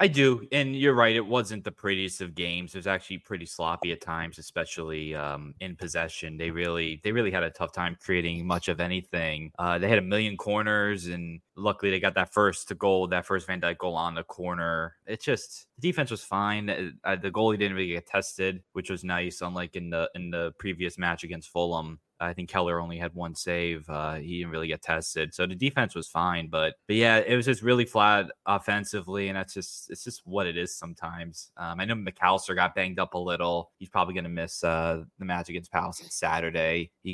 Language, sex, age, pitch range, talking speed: English, male, 10-29, 85-100 Hz, 220 wpm